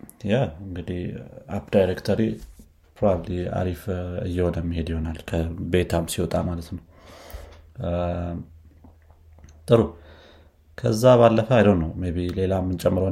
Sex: male